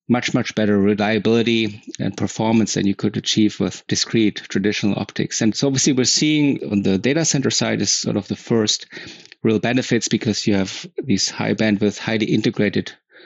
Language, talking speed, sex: English, 175 wpm, male